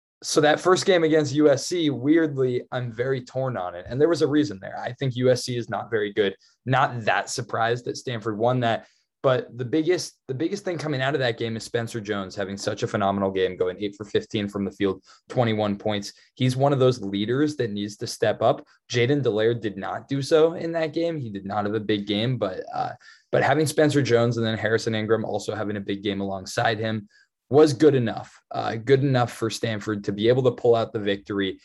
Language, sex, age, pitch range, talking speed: English, male, 20-39, 110-150 Hz, 225 wpm